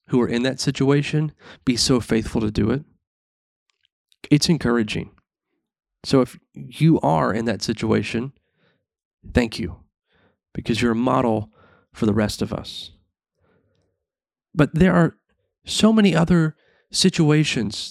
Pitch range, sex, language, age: 115-165 Hz, male, English, 30-49